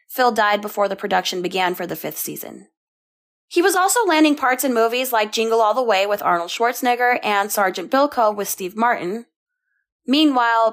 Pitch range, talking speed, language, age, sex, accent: 200-260 Hz, 180 wpm, English, 20-39, female, American